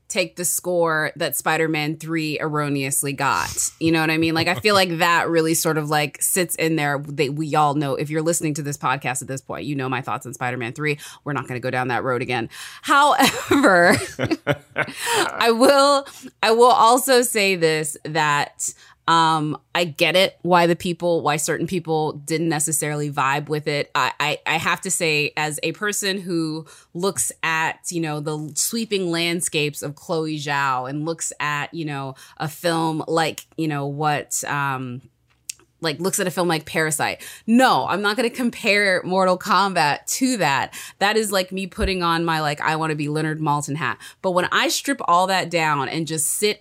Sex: female